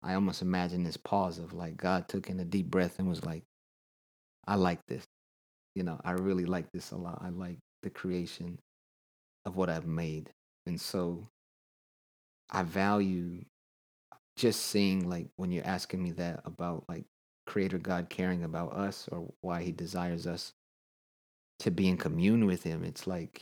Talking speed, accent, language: 170 wpm, American, English